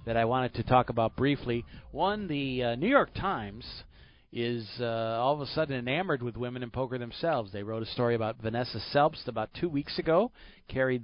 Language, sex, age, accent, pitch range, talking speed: English, male, 40-59, American, 115-150 Hz, 200 wpm